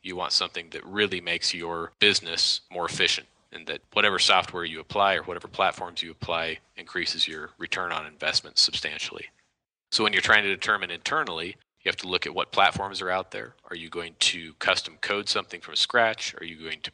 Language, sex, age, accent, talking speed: English, male, 40-59, American, 200 wpm